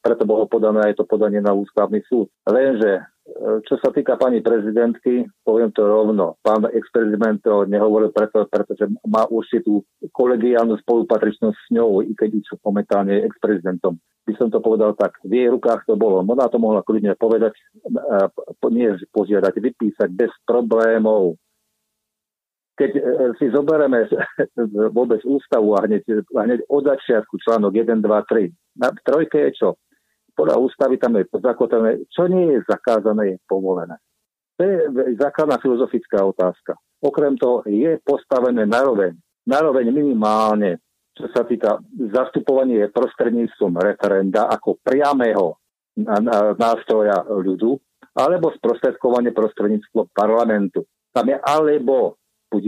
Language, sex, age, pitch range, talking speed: Slovak, male, 50-69, 105-120 Hz, 135 wpm